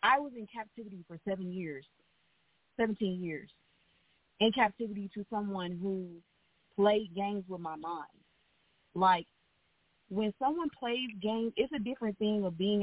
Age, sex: 30-49, female